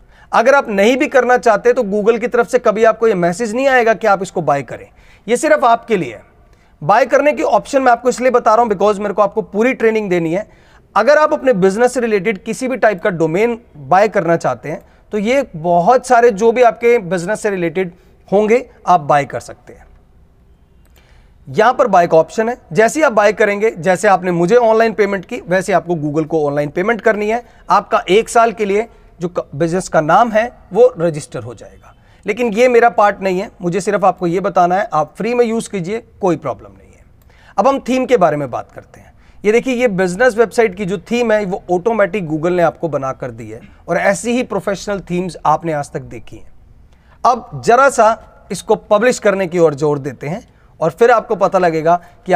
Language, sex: Hindi, male